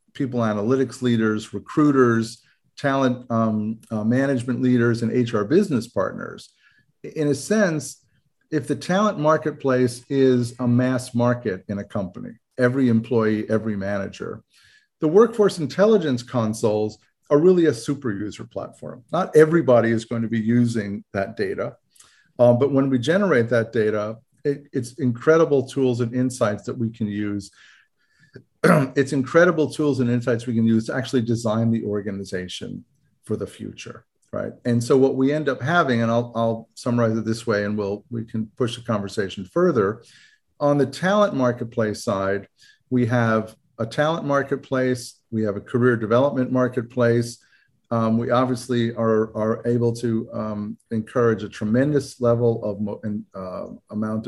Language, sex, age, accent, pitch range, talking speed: English, male, 50-69, American, 110-135 Hz, 150 wpm